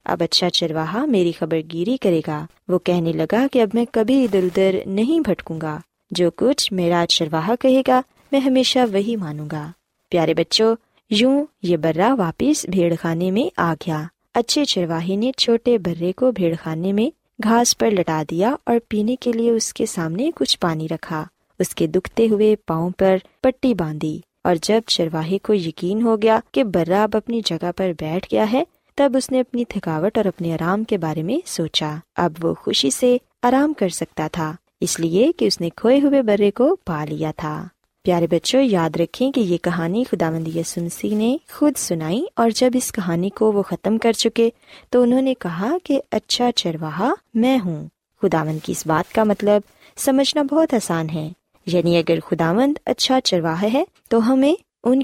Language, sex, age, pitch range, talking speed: Urdu, female, 20-39, 170-245 Hz, 175 wpm